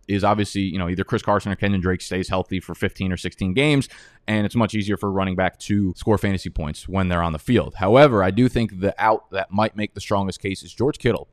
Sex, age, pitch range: male, 20-39, 90-110 Hz